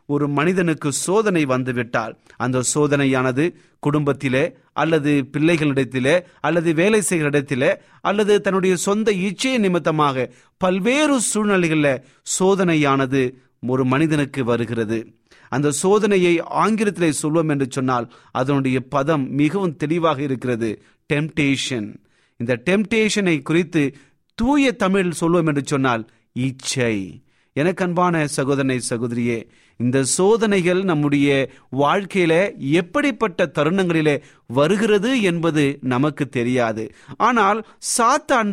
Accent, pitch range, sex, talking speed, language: native, 130-190 Hz, male, 95 wpm, Tamil